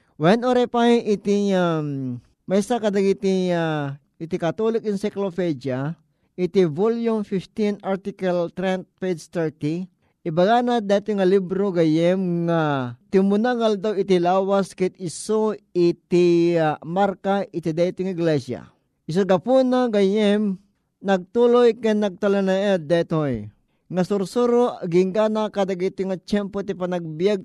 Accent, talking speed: native, 120 wpm